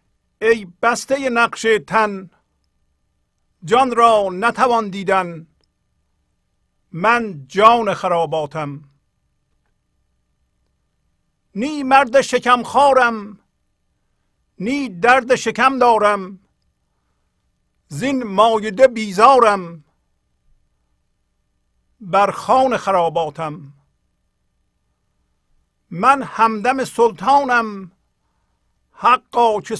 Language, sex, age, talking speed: Persian, male, 50-69, 60 wpm